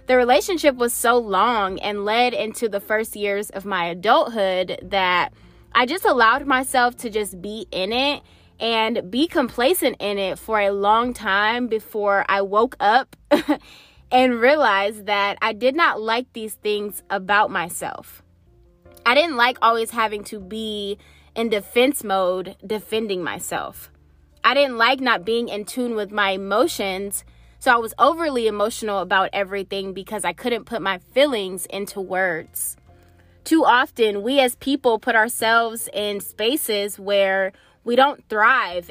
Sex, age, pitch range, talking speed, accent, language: female, 20-39, 195-240 Hz, 150 wpm, American, English